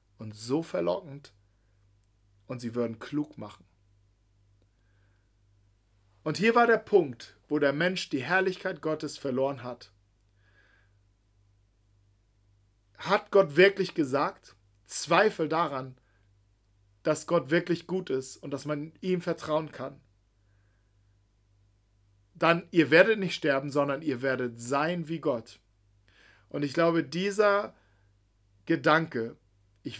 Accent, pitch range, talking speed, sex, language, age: German, 100-160 Hz, 110 wpm, male, German, 40-59